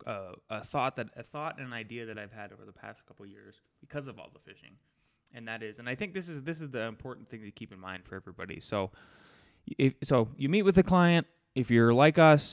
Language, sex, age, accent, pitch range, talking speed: English, male, 20-39, American, 110-145 Hz, 255 wpm